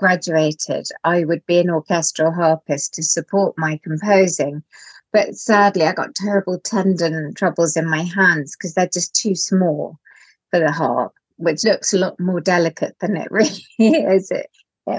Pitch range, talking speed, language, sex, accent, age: 165-210 Hz, 165 wpm, English, female, British, 30-49